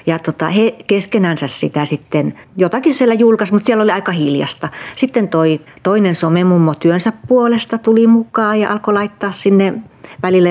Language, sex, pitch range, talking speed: Finnish, female, 155-195 Hz, 135 wpm